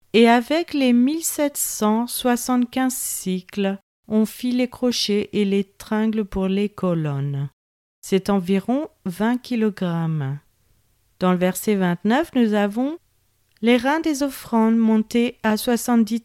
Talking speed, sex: 120 wpm, female